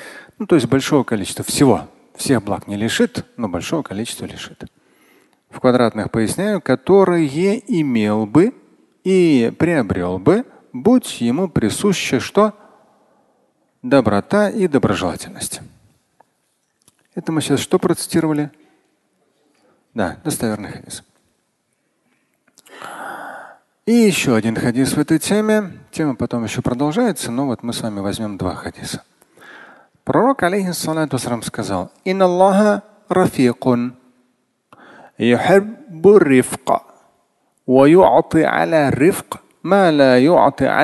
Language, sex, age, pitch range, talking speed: Russian, male, 40-59, 120-185 Hz, 90 wpm